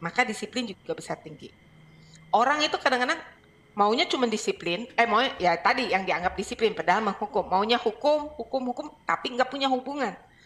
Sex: female